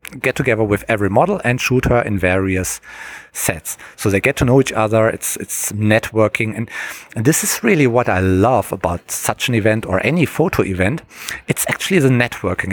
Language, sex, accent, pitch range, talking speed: English, male, German, 95-130 Hz, 195 wpm